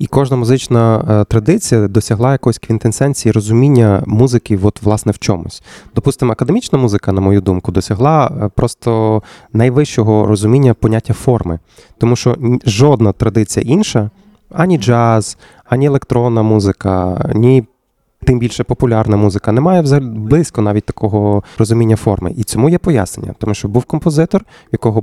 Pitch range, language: 105-130 Hz, Ukrainian